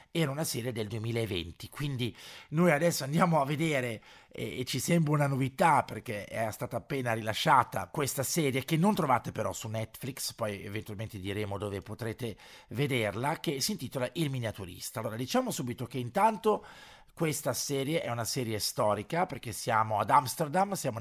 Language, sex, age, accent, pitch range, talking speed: Italian, male, 50-69, native, 110-145 Hz, 165 wpm